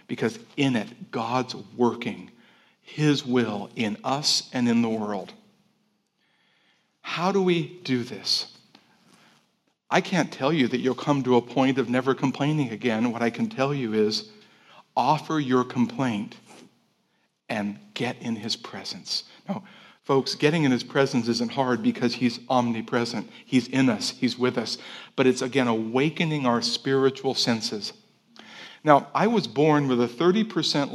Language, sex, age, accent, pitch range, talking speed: English, male, 50-69, American, 120-155 Hz, 150 wpm